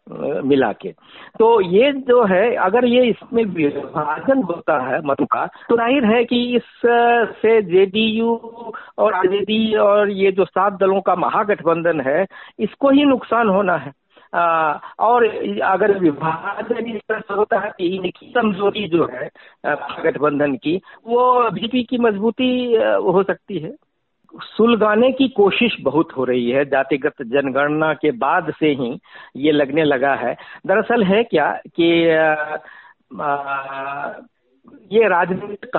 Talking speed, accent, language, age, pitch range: 135 wpm, native, Hindi, 50-69, 155-230 Hz